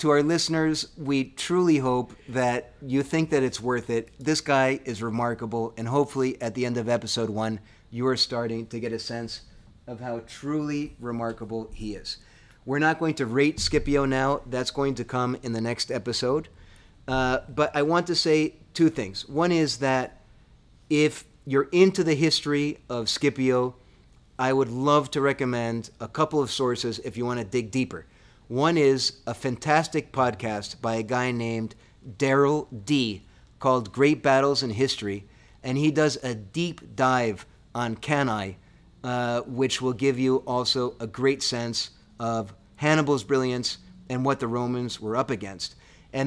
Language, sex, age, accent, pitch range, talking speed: English, male, 30-49, American, 115-140 Hz, 165 wpm